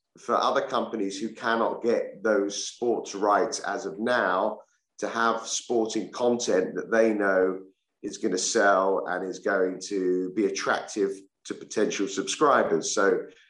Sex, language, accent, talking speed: male, English, British, 145 wpm